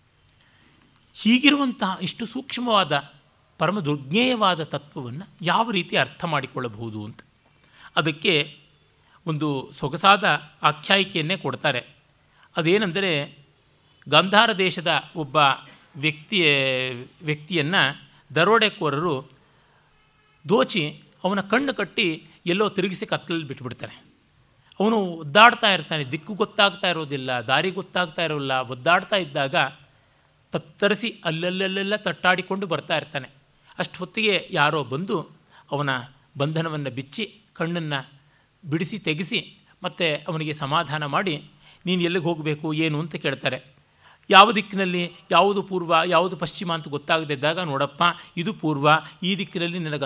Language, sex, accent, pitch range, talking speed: Kannada, male, native, 145-185 Hz, 95 wpm